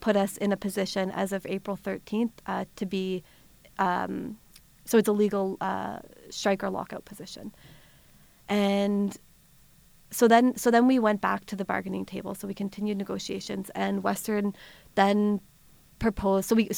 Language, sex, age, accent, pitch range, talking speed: English, female, 30-49, American, 185-205 Hz, 155 wpm